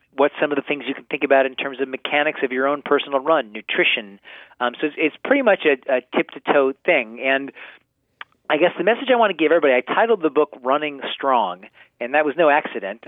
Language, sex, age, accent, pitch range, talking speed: English, male, 40-59, American, 125-150 Hz, 230 wpm